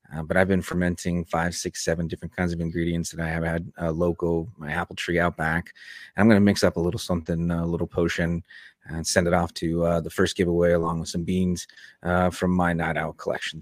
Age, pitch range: 30-49, 80-95 Hz